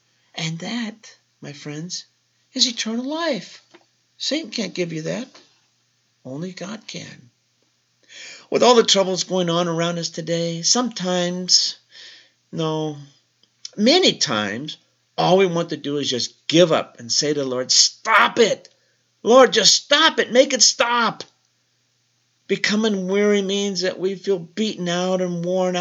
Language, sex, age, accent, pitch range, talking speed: English, male, 50-69, American, 145-190 Hz, 140 wpm